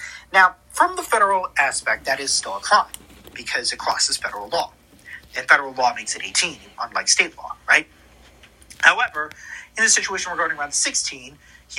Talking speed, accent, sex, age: 170 wpm, American, male, 40-59